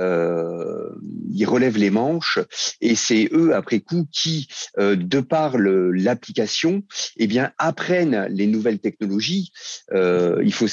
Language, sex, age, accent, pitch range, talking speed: French, male, 40-59, French, 95-130 Hz, 140 wpm